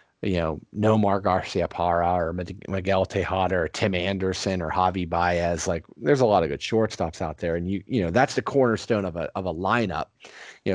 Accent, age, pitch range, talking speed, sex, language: American, 40-59, 90-105 Hz, 205 wpm, male, English